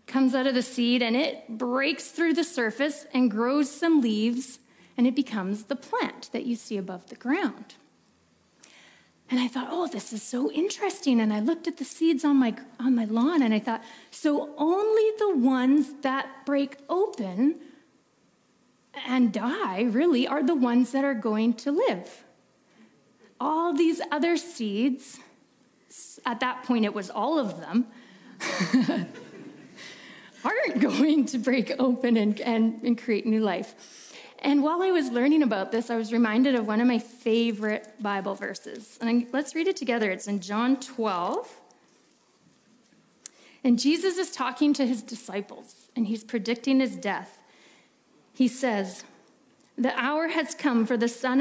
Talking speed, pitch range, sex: 160 wpm, 225-285 Hz, female